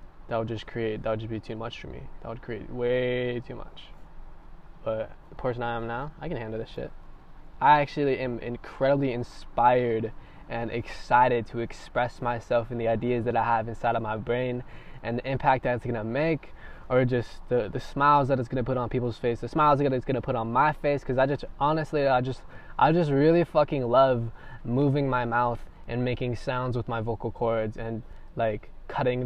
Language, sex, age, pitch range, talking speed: English, male, 10-29, 110-130 Hz, 205 wpm